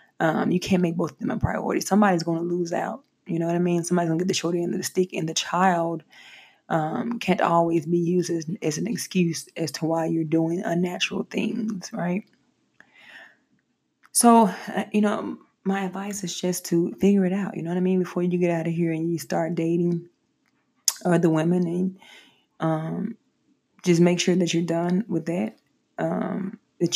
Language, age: English, 20-39